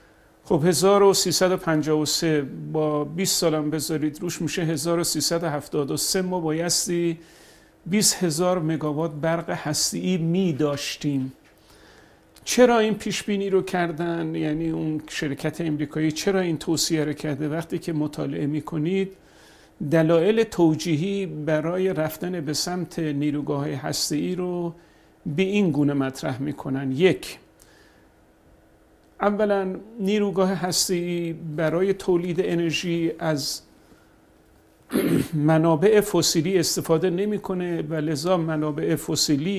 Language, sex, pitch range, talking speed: Persian, male, 155-185 Hz, 100 wpm